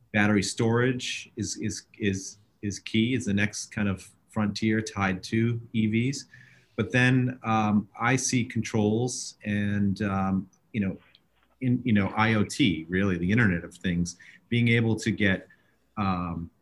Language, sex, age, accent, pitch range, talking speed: English, male, 30-49, American, 95-110 Hz, 145 wpm